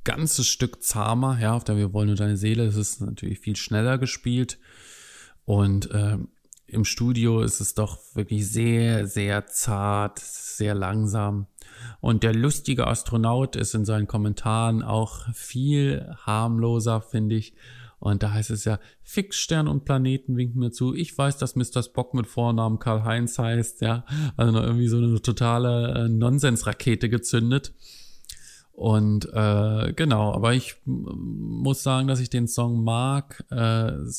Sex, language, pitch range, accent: male, German, 105-120 Hz, German